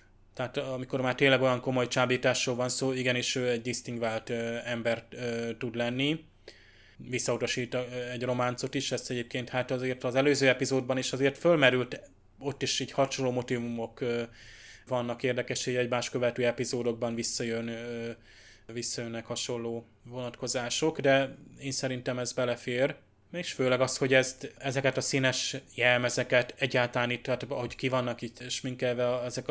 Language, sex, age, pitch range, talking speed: Hungarian, male, 20-39, 120-130 Hz, 145 wpm